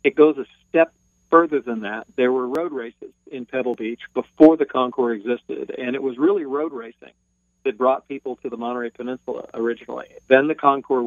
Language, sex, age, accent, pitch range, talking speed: English, male, 40-59, American, 120-140 Hz, 190 wpm